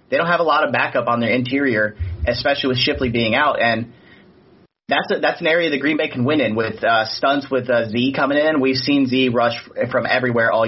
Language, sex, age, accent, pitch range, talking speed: English, male, 30-49, American, 115-140 Hz, 235 wpm